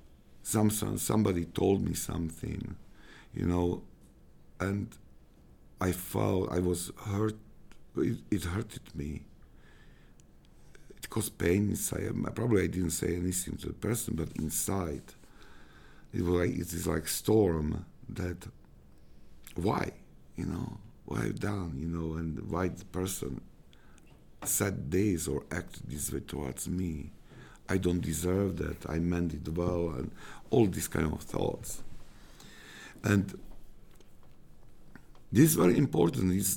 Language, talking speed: English, 125 wpm